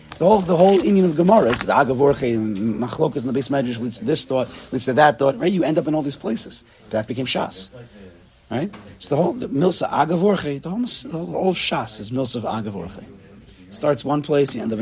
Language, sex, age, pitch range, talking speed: English, male, 30-49, 110-155 Hz, 225 wpm